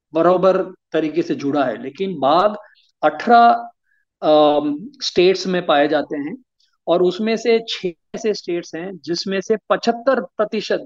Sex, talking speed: male, 135 wpm